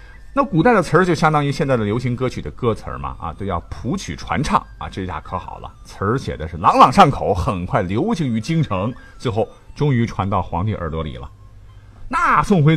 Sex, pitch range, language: male, 100-150 Hz, Chinese